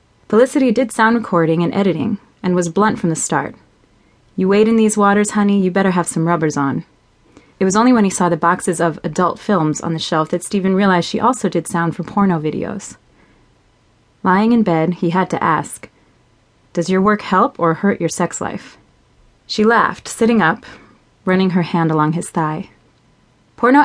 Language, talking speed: English, 190 wpm